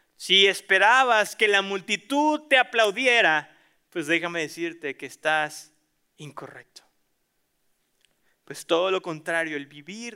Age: 30-49